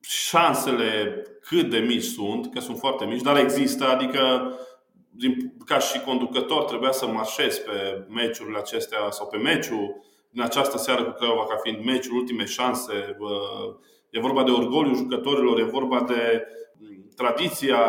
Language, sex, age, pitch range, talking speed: Romanian, male, 20-39, 115-145 Hz, 150 wpm